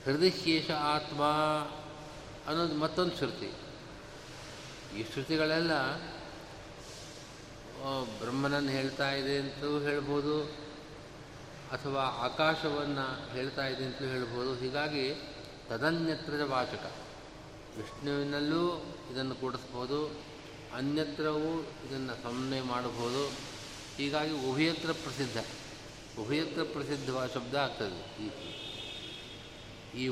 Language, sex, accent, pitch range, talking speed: Kannada, male, native, 120-150 Hz, 70 wpm